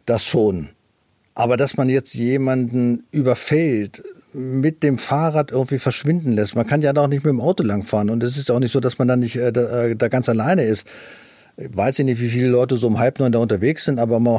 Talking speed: 220 wpm